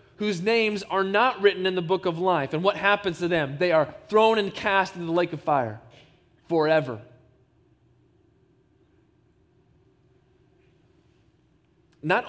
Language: English